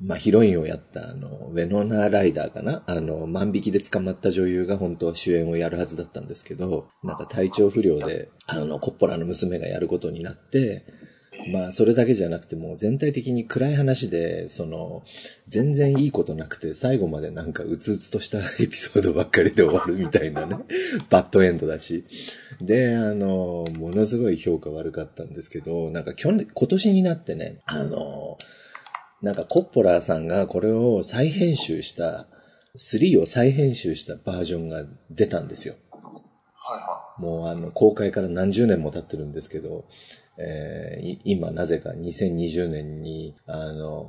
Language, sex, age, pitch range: Japanese, male, 40-59, 85-115 Hz